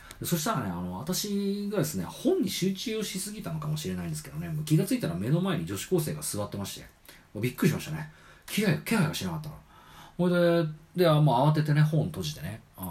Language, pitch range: Japanese, 135-175 Hz